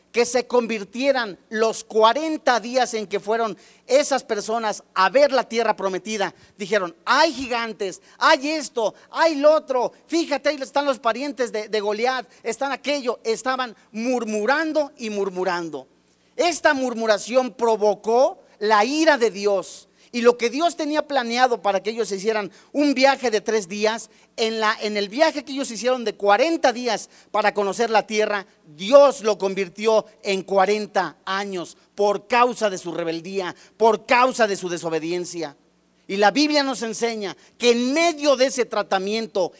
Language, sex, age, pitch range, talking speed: Spanish, male, 40-59, 205-265 Hz, 155 wpm